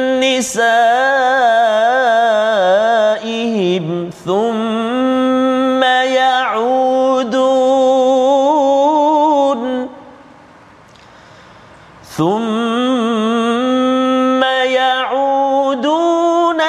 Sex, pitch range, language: male, 250-275 Hz, Malayalam